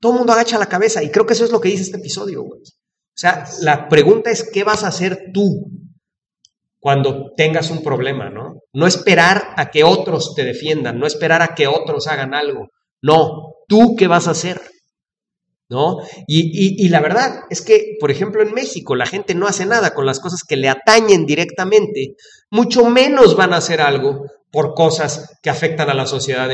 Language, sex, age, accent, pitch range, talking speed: English, male, 40-59, Mexican, 150-235 Hz, 200 wpm